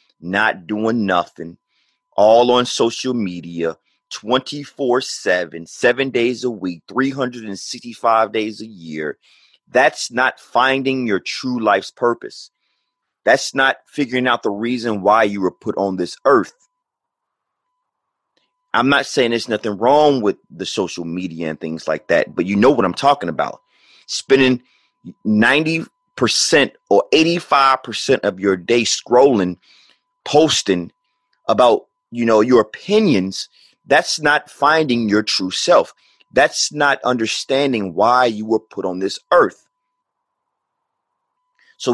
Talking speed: 125 wpm